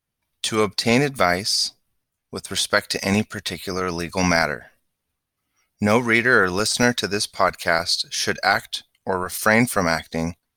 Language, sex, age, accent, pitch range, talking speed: English, male, 30-49, American, 95-115 Hz, 130 wpm